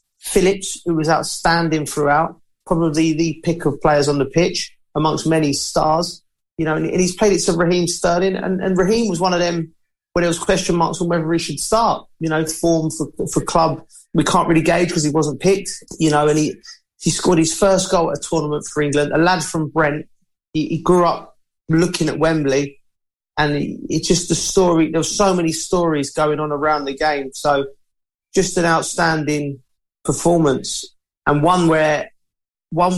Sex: male